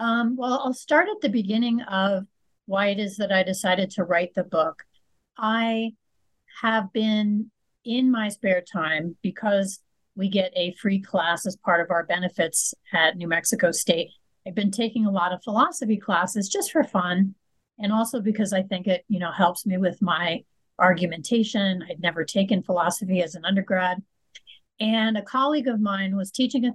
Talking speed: 175 wpm